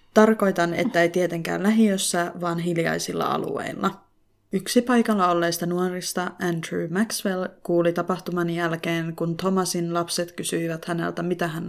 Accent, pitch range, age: native, 170-195 Hz, 20-39